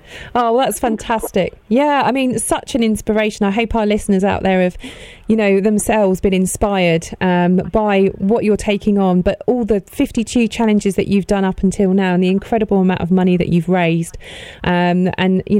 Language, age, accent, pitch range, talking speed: English, 30-49, British, 180-220 Hz, 195 wpm